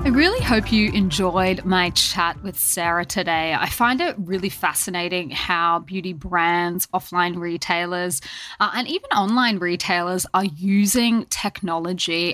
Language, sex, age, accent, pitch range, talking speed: English, female, 20-39, Australian, 175-215 Hz, 135 wpm